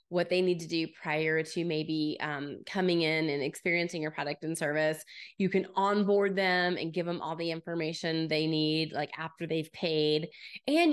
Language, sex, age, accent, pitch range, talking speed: English, female, 20-39, American, 160-210 Hz, 185 wpm